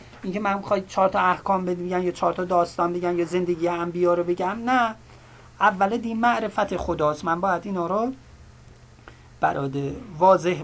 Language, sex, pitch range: English, male, 155-200 Hz